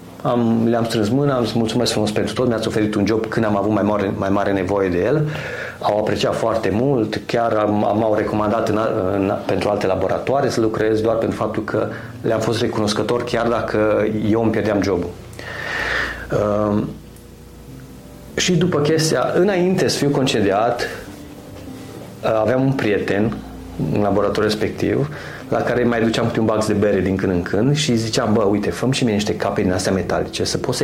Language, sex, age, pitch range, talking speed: Romanian, male, 30-49, 105-125 Hz, 185 wpm